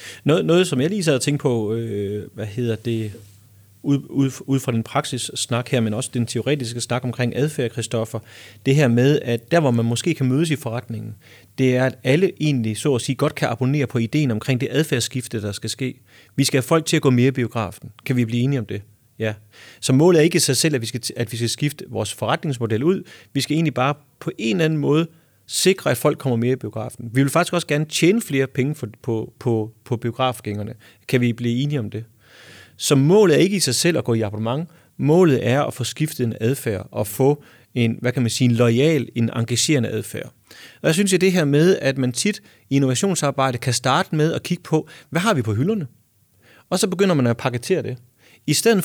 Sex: male